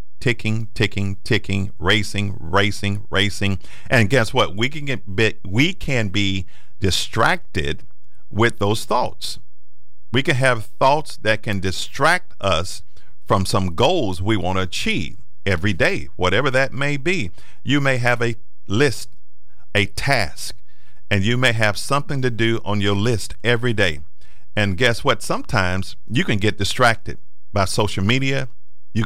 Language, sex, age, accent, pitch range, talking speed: English, male, 50-69, American, 95-120 Hz, 150 wpm